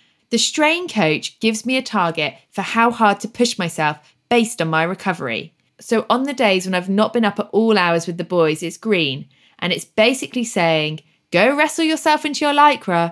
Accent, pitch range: British, 165-225 Hz